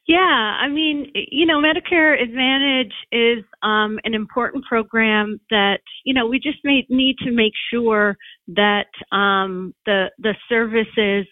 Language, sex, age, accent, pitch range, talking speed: English, female, 40-59, American, 200-230 Hz, 145 wpm